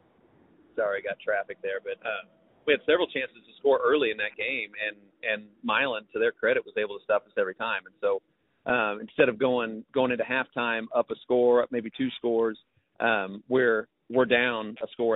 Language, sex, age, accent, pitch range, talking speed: English, male, 30-49, American, 105-125 Hz, 205 wpm